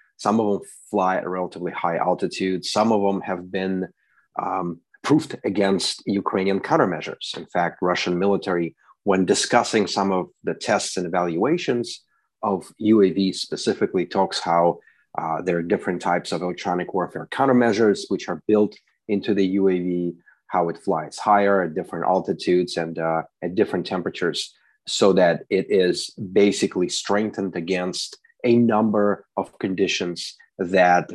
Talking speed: 145 wpm